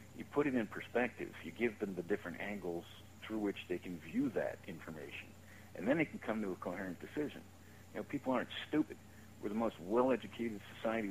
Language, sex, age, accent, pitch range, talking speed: English, male, 60-79, American, 95-115 Hz, 200 wpm